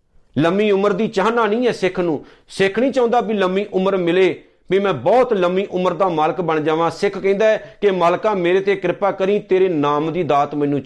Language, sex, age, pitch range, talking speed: Punjabi, male, 50-69, 170-215 Hz, 205 wpm